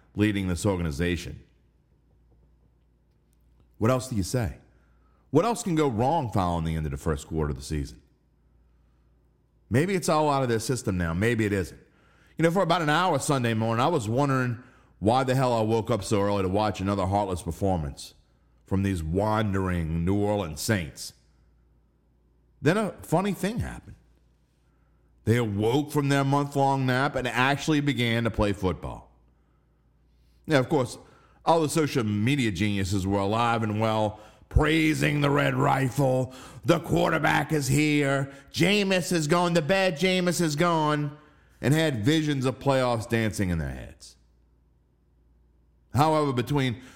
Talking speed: 155 wpm